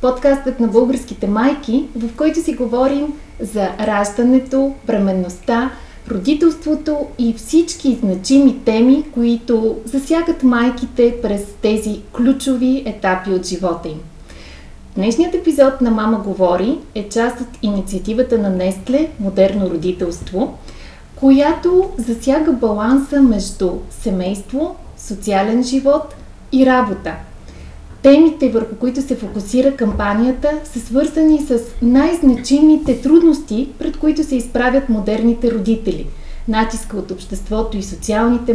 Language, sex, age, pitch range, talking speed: Bulgarian, female, 30-49, 210-270 Hz, 110 wpm